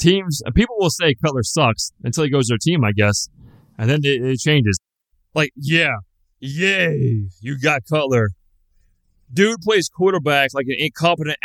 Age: 30-49